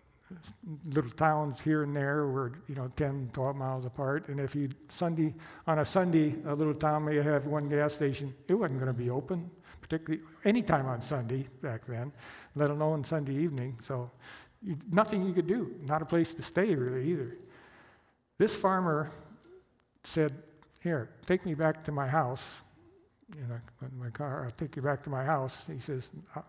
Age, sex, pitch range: 60-79, male, 130-160 Hz